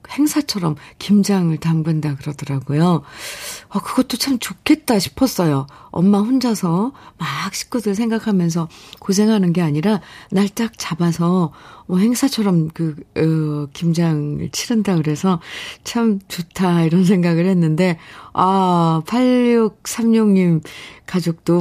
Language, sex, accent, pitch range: Korean, female, native, 170-240 Hz